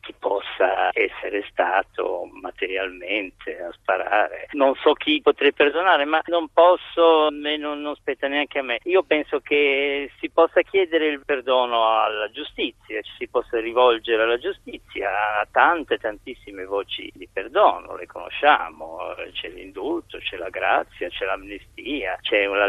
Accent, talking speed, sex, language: native, 145 wpm, male, Italian